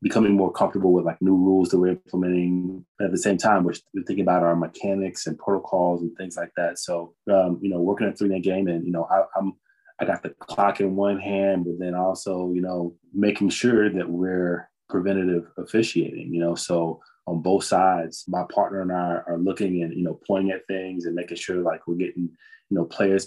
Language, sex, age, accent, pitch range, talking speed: English, male, 20-39, American, 85-95 Hz, 215 wpm